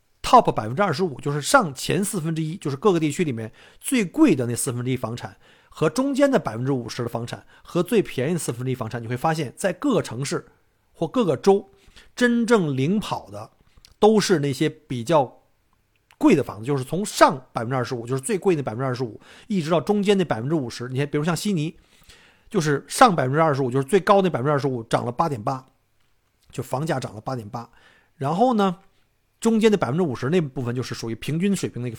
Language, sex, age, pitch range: Chinese, male, 50-69, 120-175 Hz